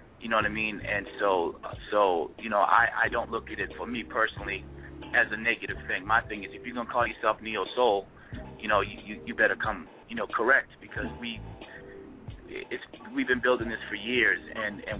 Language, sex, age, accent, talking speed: English, male, 30-49, American, 215 wpm